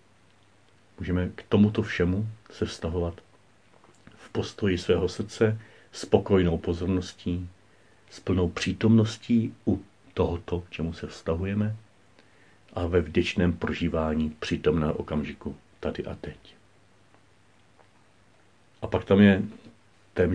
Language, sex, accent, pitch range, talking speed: Czech, male, native, 90-110 Hz, 105 wpm